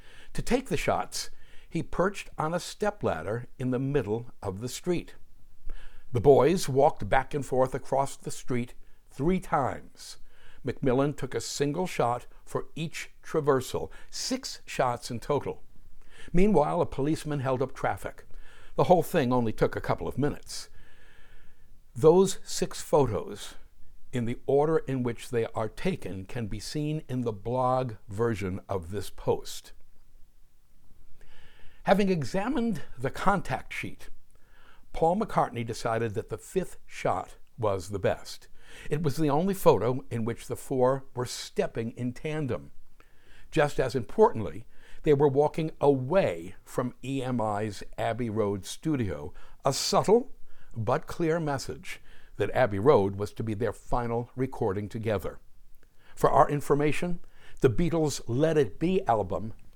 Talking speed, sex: 140 wpm, male